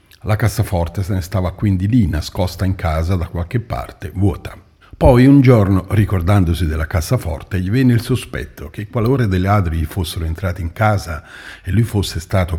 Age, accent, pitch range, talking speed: 50-69, native, 90-110 Hz, 175 wpm